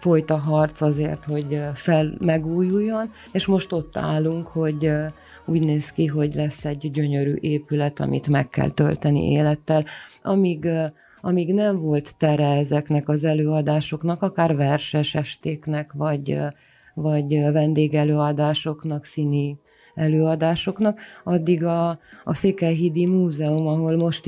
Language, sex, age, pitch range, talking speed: Hungarian, female, 30-49, 145-165 Hz, 115 wpm